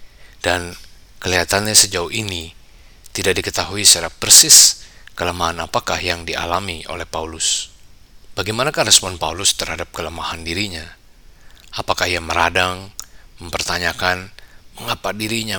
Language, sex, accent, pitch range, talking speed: Indonesian, male, native, 85-100 Hz, 100 wpm